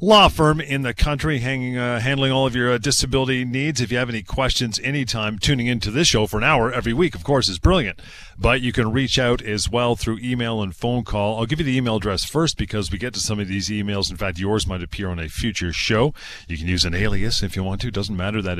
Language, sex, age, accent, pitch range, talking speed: English, male, 40-59, American, 100-130 Hz, 270 wpm